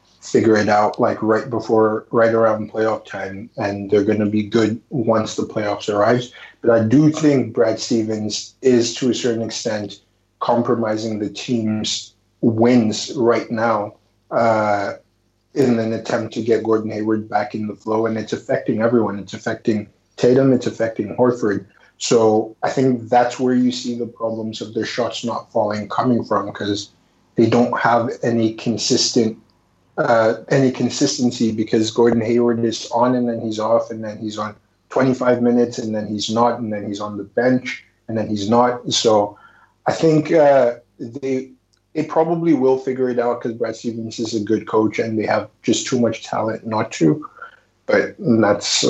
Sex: male